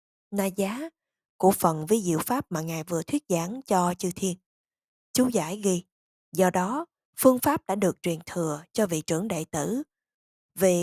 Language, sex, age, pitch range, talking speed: Vietnamese, female, 20-39, 175-240 Hz, 175 wpm